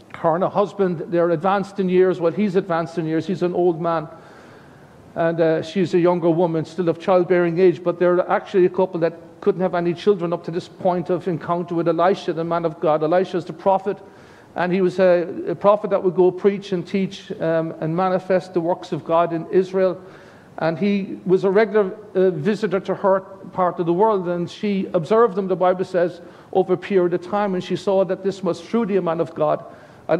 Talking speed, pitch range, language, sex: 220 wpm, 175-200 Hz, English, male